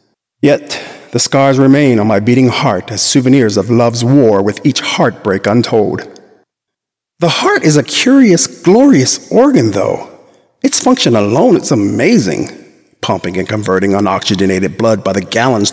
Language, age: English, 50-69